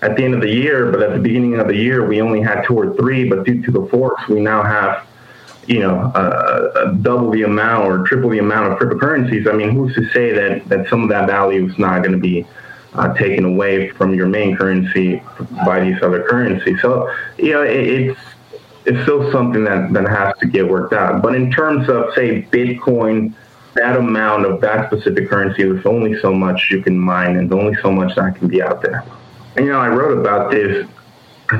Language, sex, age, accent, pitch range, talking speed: English, male, 20-39, American, 95-120 Hz, 225 wpm